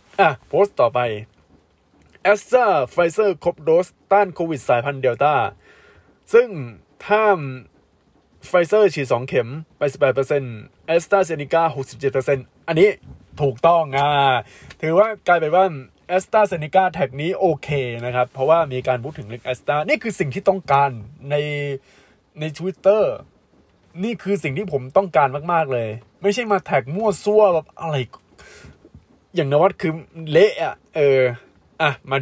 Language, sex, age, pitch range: Thai, male, 20-39, 130-180 Hz